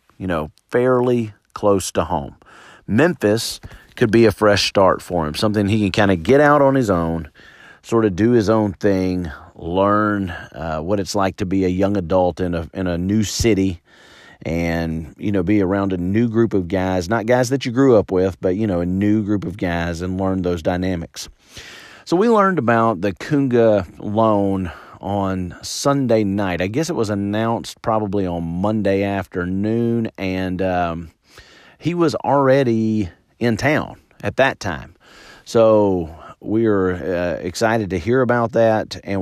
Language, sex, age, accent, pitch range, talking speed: English, male, 40-59, American, 90-115 Hz, 175 wpm